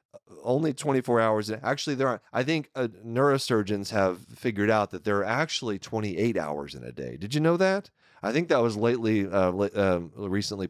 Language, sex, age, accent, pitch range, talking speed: English, male, 30-49, American, 95-140 Hz, 200 wpm